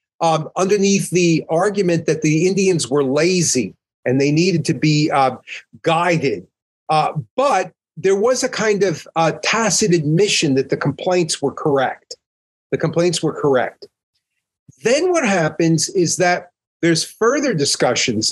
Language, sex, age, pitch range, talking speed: English, male, 40-59, 140-185 Hz, 140 wpm